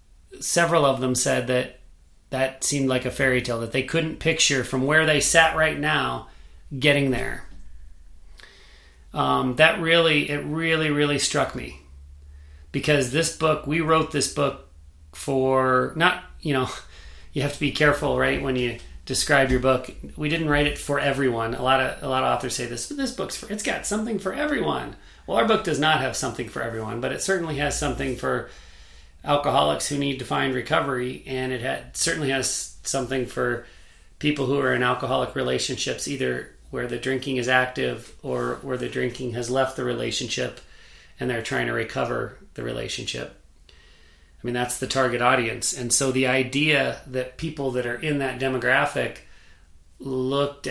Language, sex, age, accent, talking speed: English, male, 40-59, American, 175 wpm